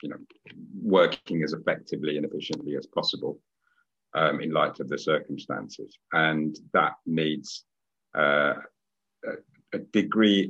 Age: 50-69